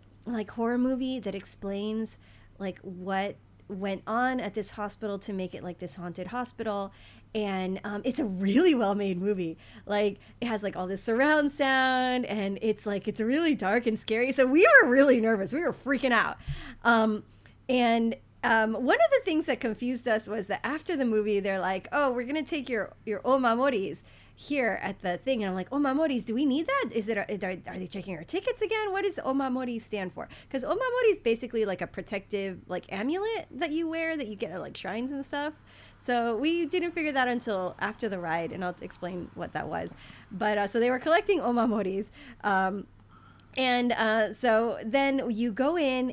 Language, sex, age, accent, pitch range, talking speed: English, female, 30-49, American, 200-265 Hz, 195 wpm